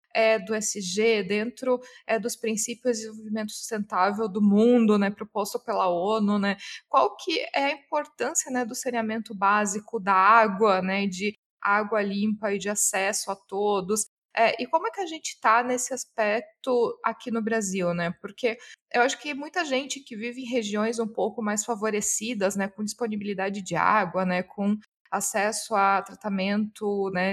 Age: 20-39